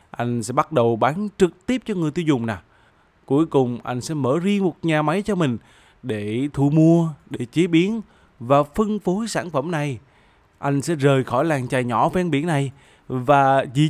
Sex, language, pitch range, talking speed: male, Vietnamese, 120-170 Hz, 205 wpm